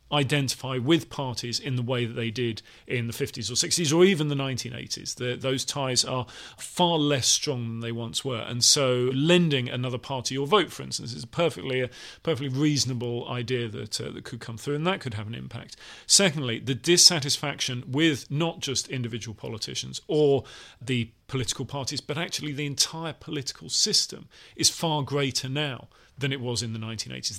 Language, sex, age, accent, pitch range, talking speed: English, male, 40-59, British, 120-150 Hz, 185 wpm